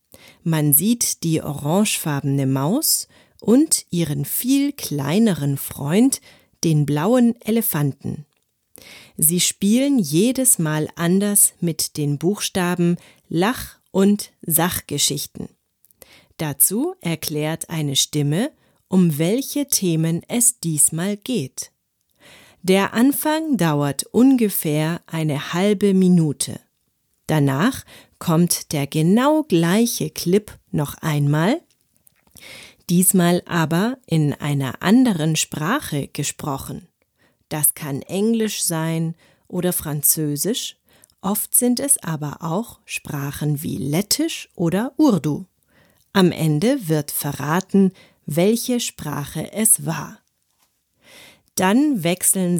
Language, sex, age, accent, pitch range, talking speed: German, female, 40-59, German, 150-215 Hz, 95 wpm